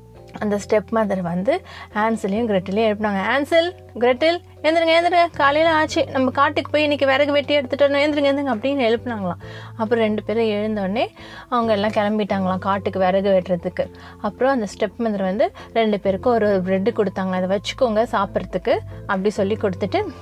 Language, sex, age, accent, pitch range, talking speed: Tamil, female, 30-49, native, 205-270 Hz, 150 wpm